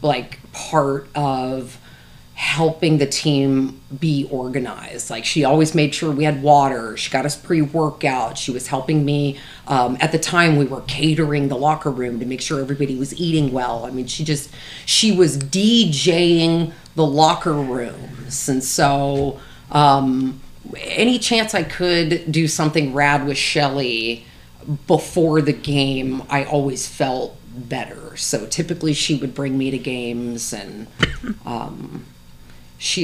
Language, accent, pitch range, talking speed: English, American, 130-155 Hz, 145 wpm